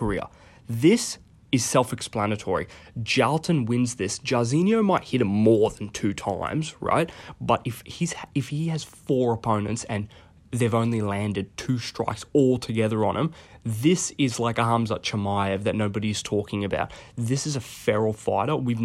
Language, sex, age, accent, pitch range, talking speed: English, male, 20-39, Australian, 105-135 Hz, 160 wpm